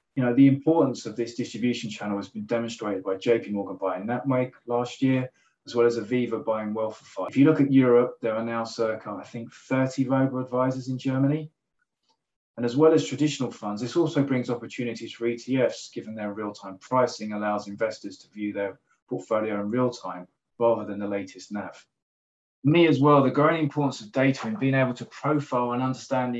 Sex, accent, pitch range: male, British, 105-130 Hz